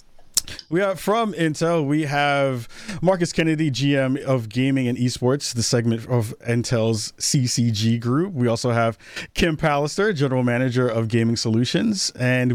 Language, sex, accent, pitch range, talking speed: English, male, American, 115-155 Hz, 145 wpm